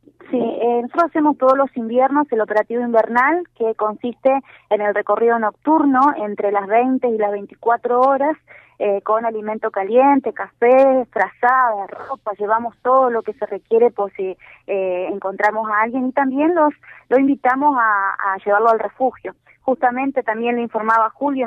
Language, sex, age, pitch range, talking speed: Spanish, female, 20-39, 210-255 Hz, 160 wpm